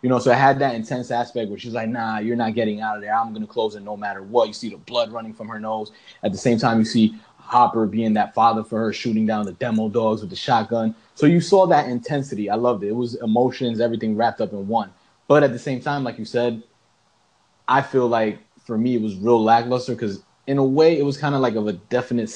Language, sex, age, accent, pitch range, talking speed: English, male, 20-39, American, 105-125 Hz, 265 wpm